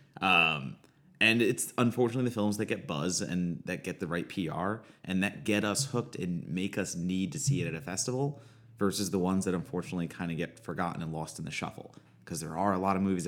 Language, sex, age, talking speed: English, male, 30-49, 230 wpm